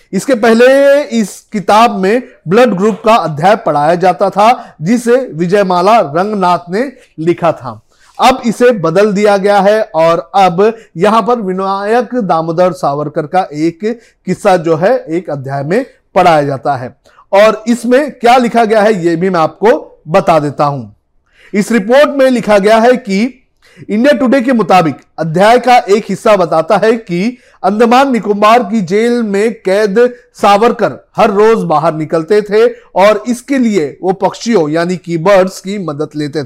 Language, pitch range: Hindi, 175-240 Hz